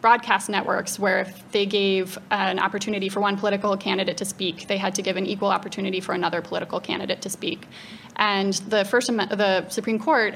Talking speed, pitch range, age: 190 wpm, 195-215 Hz, 20-39